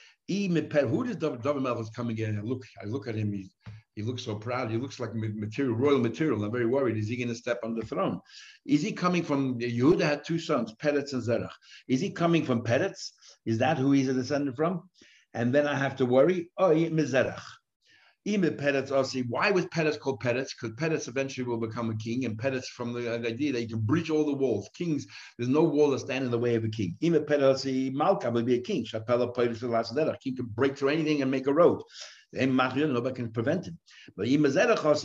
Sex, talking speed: male, 235 wpm